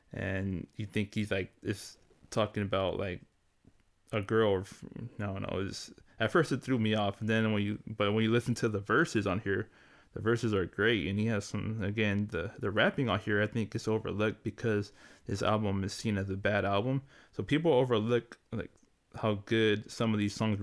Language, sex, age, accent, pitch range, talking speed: English, male, 20-39, American, 100-120 Hz, 205 wpm